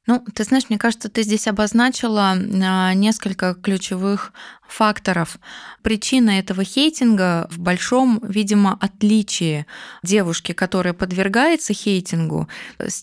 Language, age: Russian, 20-39